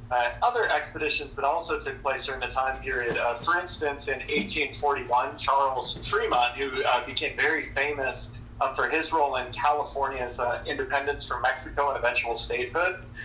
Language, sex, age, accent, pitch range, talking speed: English, male, 30-49, American, 120-145 Hz, 165 wpm